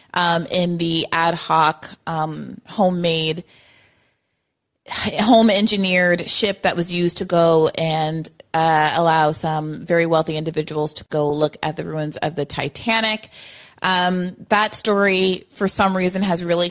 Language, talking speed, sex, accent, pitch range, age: English, 140 wpm, female, American, 165-205 Hz, 30-49